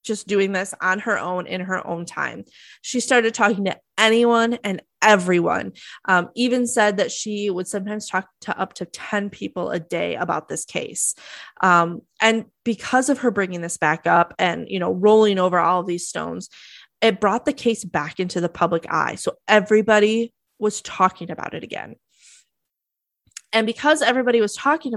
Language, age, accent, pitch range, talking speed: English, 20-39, American, 185-240 Hz, 175 wpm